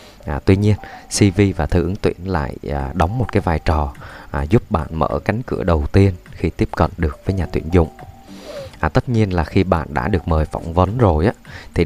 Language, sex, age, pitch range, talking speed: Vietnamese, male, 20-39, 80-100 Hz, 205 wpm